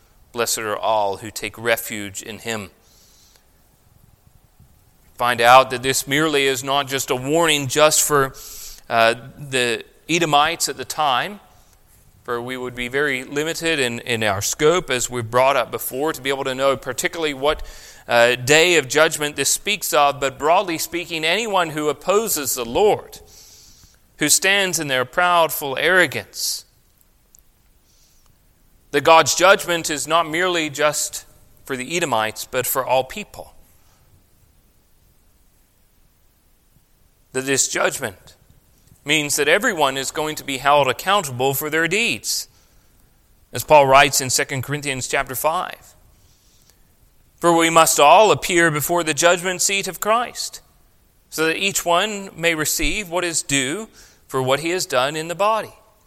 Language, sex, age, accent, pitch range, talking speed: English, male, 40-59, American, 120-165 Hz, 145 wpm